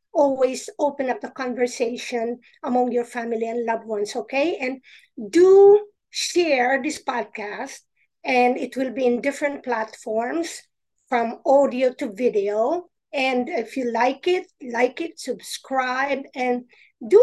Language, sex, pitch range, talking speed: English, female, 240-295 Hz, 130 wpm